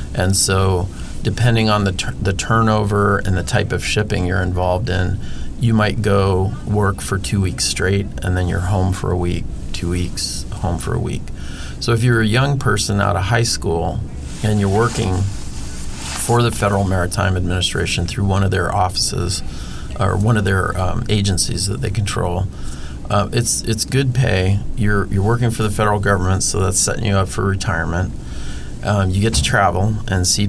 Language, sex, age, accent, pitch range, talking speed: English, male, 30-49, American, 90-105 Hz, 185 wpm